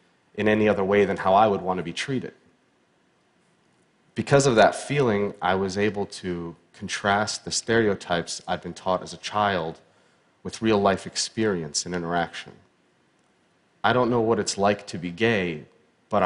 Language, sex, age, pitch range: Chinese, male, 30-49, 90-115 Hz